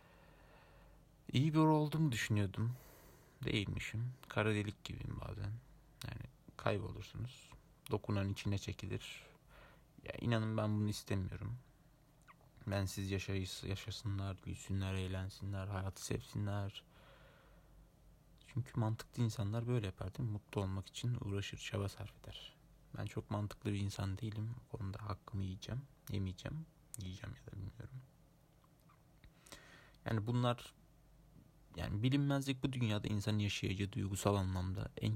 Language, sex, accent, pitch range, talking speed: Turkish, male, native, 100-135 Hz, 110 wpm